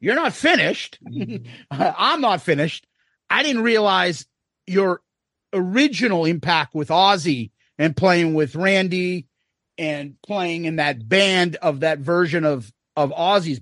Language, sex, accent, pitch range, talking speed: English, male, American, 170-240 Hz, 130 wpm